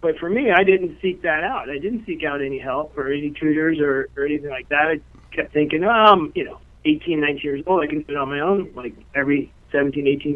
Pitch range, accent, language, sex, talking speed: 140-185 Hz, American, English, male, 245 wpm